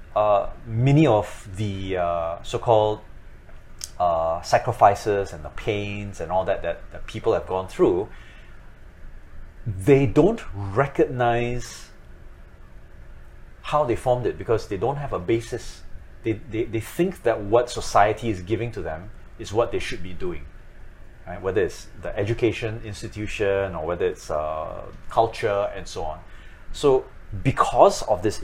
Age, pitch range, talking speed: 30-49, 90-115 Hz, 145 wpm